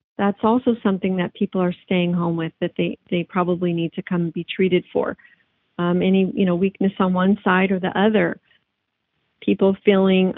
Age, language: 40-59, English